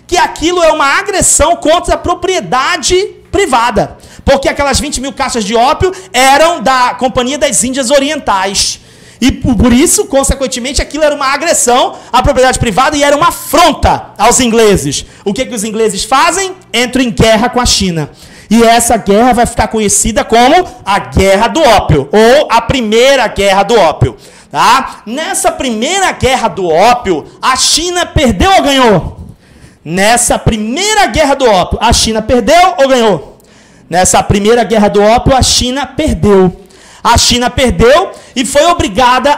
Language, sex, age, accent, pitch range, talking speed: Portuguese, male, 40-59, Brazilian, 230-300 Hz, 160 wpm